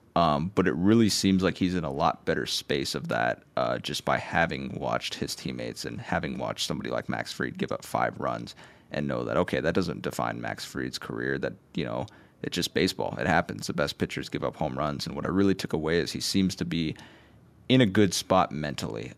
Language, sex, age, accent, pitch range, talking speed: English, male, 30-49, American, 85-100 Hz, 230 wpm